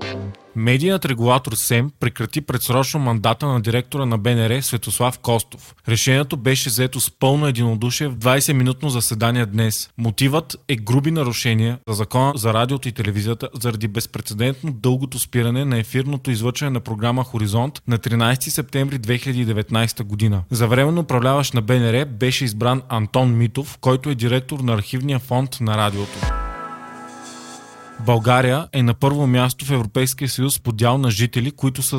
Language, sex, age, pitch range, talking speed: Bulgarian, male, 20-39, 115-135 Hz, 145 wpm